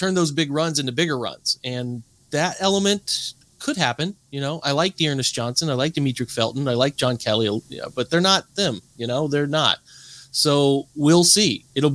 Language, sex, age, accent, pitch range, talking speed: English, male, 30-49, American, 120-155 Hz, 190 wpm